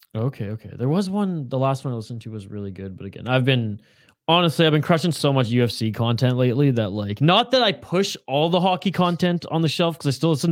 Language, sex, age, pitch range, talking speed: English, male, 20-39, 115-170 Hz, 250 wpm